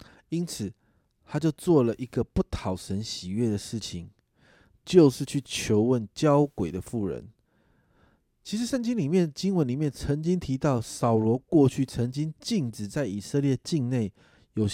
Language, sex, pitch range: Chinese, male, 105-145 Hz